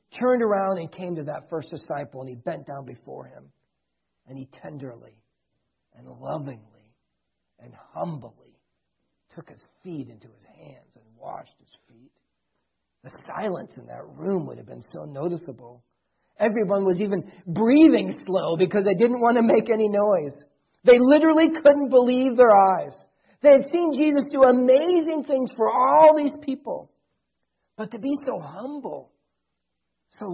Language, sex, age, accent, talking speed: English, male, 40-59, American, 150 wpm